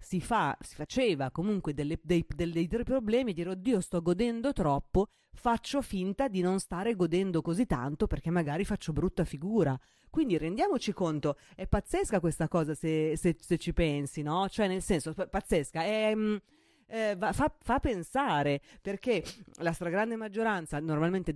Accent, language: native, Italian